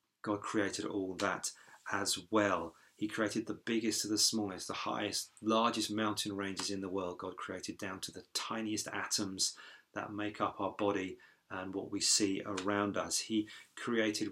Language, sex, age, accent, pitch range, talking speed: English, male, 40-59, British, 100-110 Hz, 170 wpm